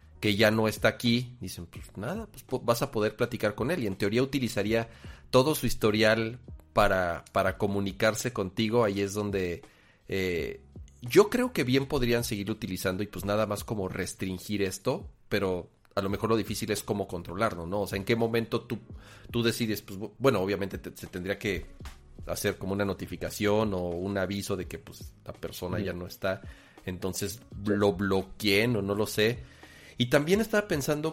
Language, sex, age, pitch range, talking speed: Spanish, male, 40-59, 95-120 Hz, 185 wpm